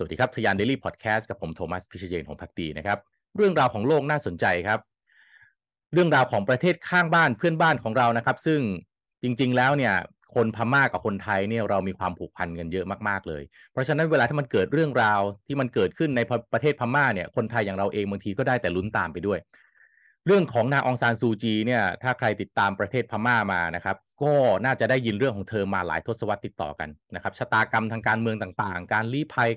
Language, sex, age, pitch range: Thai, male, 30-49, 95-125 Hz